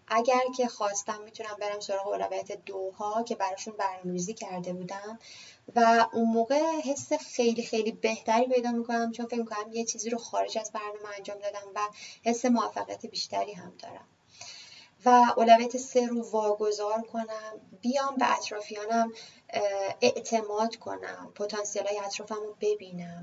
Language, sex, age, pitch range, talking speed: Persian, female, 20-39, 205-235 Hz, 135 wpm